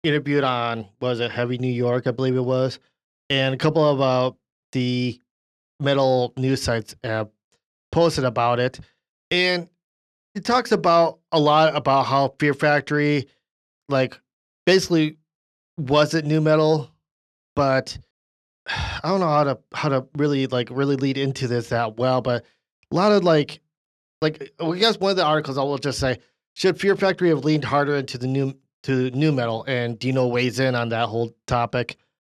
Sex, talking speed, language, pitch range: male, 170 wpm, English, 130-155 Hz